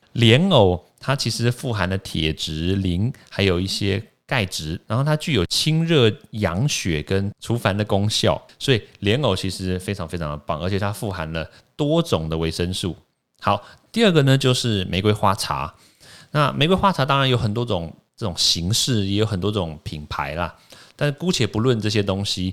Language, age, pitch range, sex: Chinese, 30-49, 90-120 Hz, male